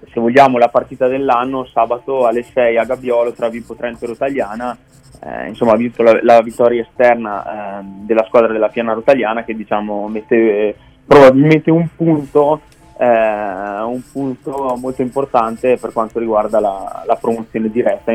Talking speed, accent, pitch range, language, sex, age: 150 wpm, native, 115-130 Hz, Italian, male, 20-39